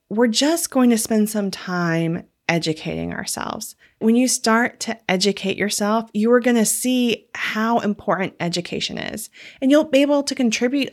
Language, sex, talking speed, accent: English, female, 165 wpm, American